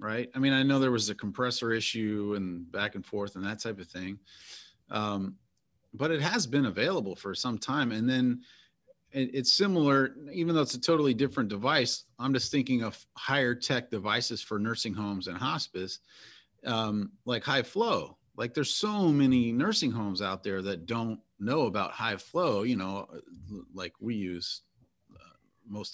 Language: English